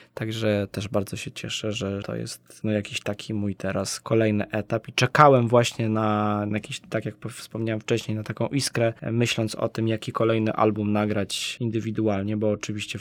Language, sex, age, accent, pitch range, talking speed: Polish, male, 20-39, native, 110-130 Hz, 170 wpm